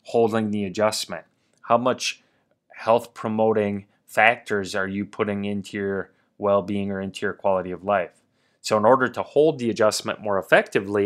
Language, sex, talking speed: English, male, 155 wpm